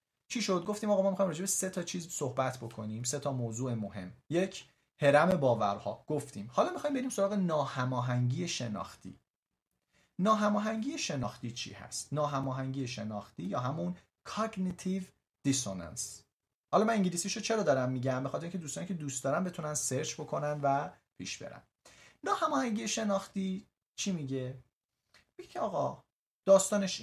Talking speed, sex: 135 wpm, male